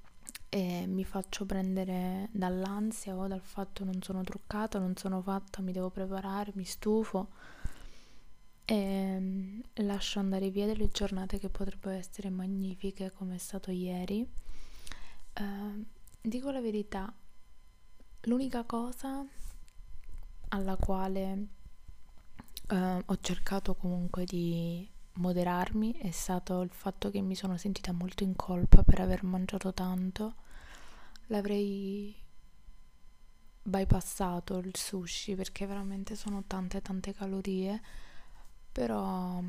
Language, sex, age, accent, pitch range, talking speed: Italian, female, 20-39, native, 185-200 Hz, 115 wpm